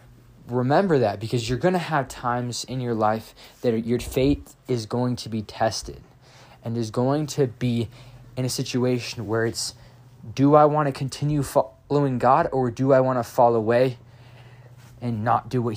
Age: 20-39